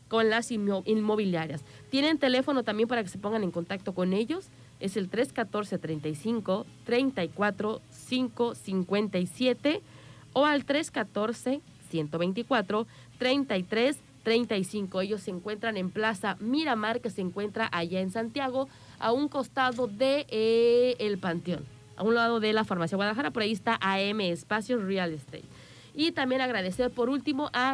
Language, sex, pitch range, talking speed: Spanish, female, 185-245 Hz, 140 wpm